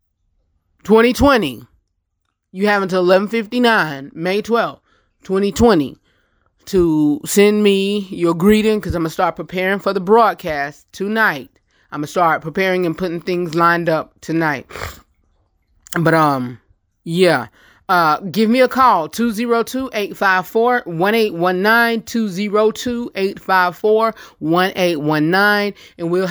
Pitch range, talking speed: 155-200 Hz, 105 wpm